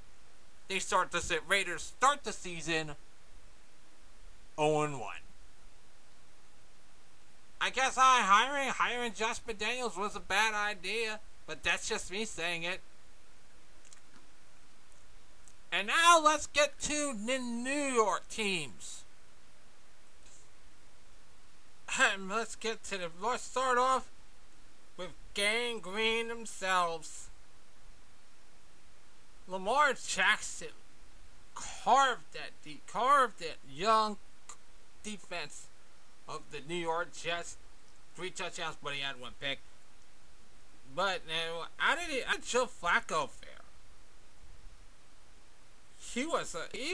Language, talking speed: English, 100 wpm